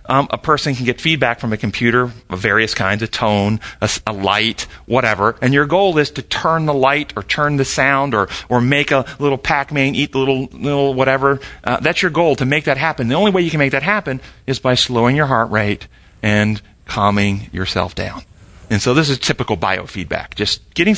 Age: 40-59